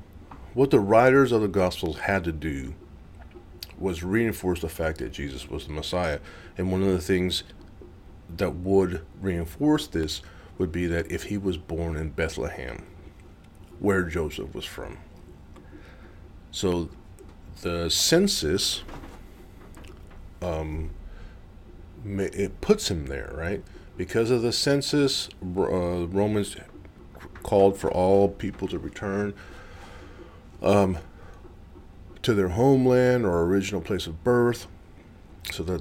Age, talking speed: 40-59, 120 wpm